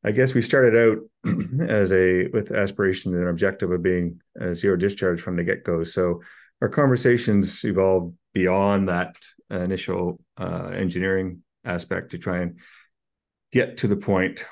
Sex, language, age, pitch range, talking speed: male, English, 50-69, 90-105 Hz, 155 wpm